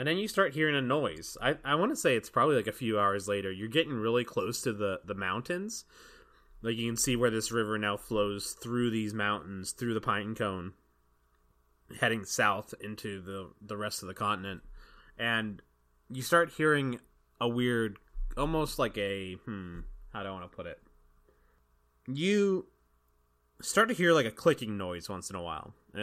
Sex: male